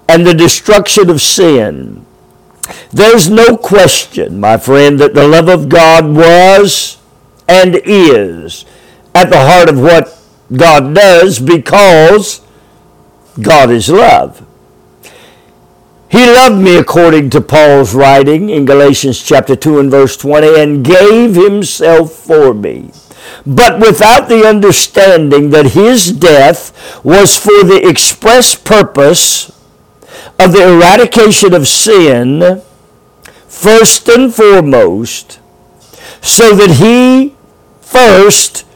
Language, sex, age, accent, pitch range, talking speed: English, male, 50-69, American, 155-215 Hz, 115 wpm